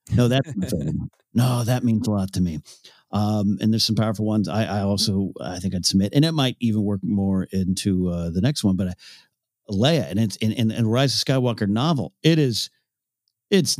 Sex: male